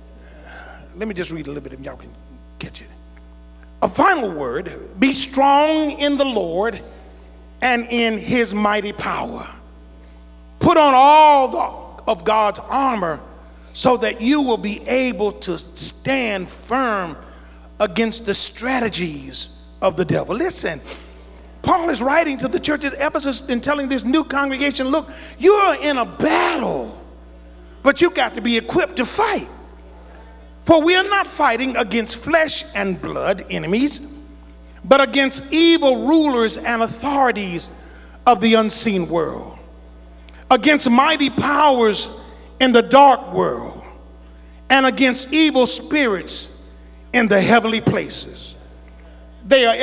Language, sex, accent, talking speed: English, male, American, 135 wpm